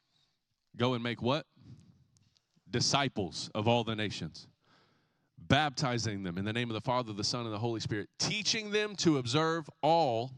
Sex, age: male, 30-49